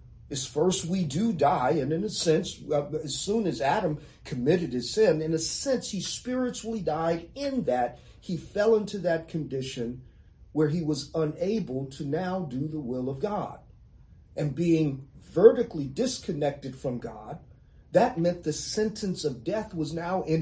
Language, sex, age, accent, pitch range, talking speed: English, male, 40-59, American, 120-180 Hz, 160 wpm